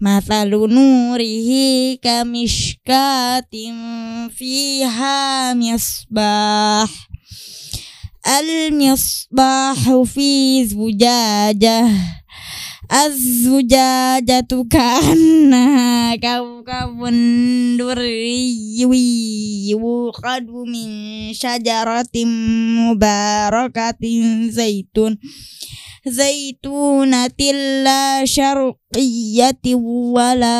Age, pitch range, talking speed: 10-29, 230-265 Hz, 40 wpm